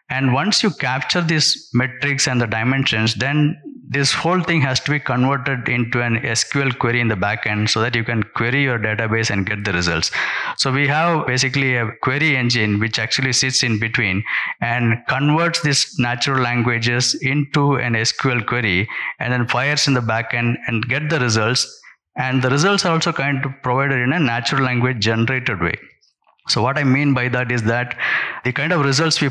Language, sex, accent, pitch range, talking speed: English, male, Indian, 115-140 Hz, 190 wpm